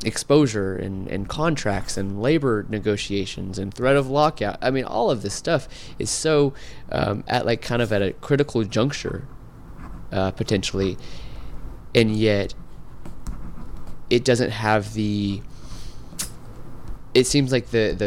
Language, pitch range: English, 100-125 Hz